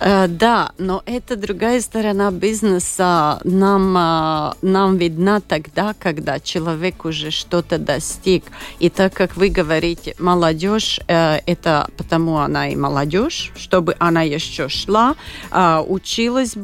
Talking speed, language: 110 wpm, Russian